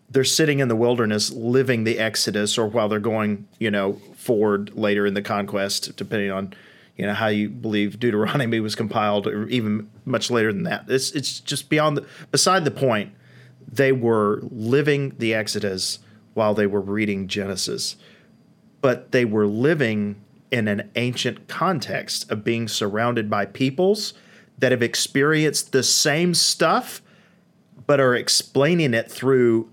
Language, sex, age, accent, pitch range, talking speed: English, male, 40-59, American, 105-140 Hz, 155 wpm